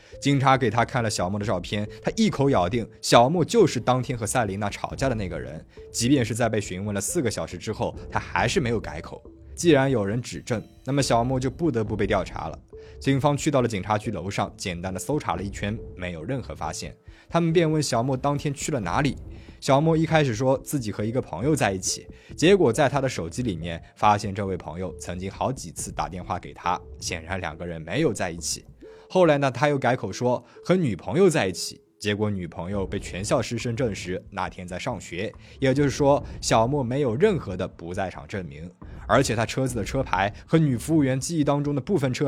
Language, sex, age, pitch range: Chinese, male, 20-39, 95-135 Hz